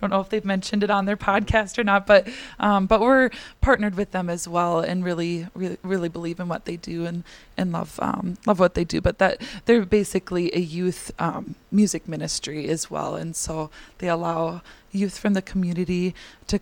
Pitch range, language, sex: 175-215 Hz, English, female